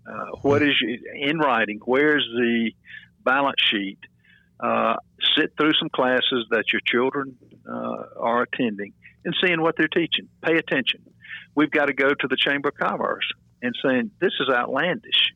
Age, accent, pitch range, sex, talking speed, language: 50-69, American, 110-140 Hz, male, 160 wpm, English